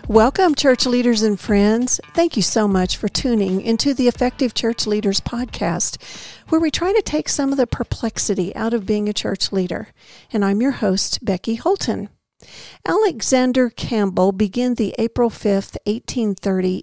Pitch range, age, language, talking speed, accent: 205-260 Hz, 50-69, English, 160 wpm, American